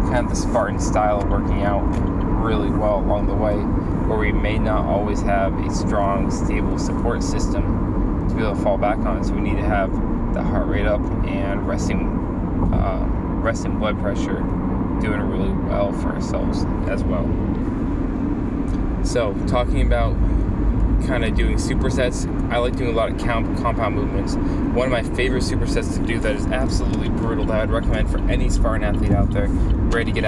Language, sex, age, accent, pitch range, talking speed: English, male, 20-39, American, 90-105 Hz, 180 wpm